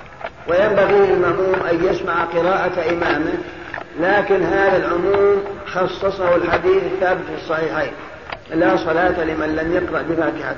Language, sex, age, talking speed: Arabic, male, 50-69, 115 wpm